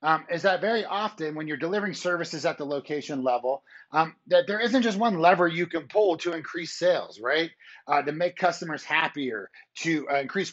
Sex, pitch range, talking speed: male, 145-185 Hz, 200 wpm